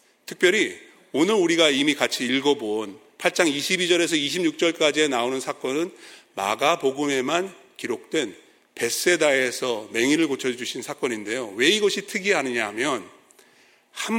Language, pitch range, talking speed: English, 140-220 Hz, 95 wpm